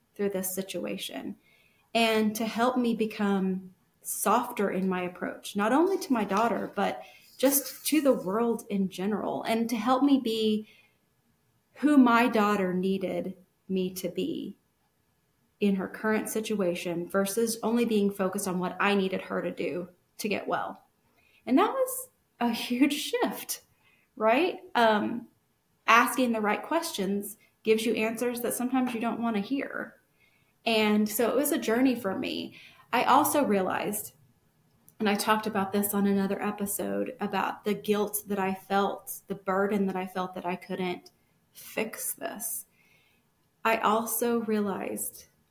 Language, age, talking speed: English, 30-49, 150 wpm